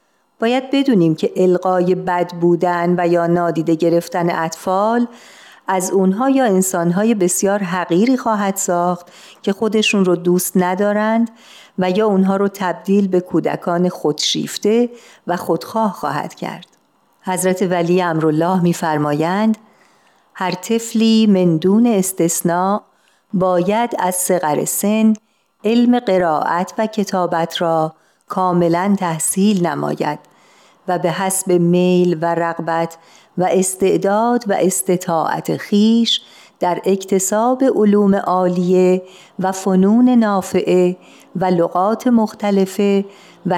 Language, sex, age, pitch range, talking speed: Persian, female, 50-69, 175-210 Hz, 110 wpm